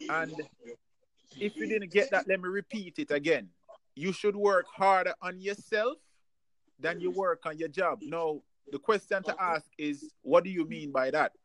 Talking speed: 185 wpm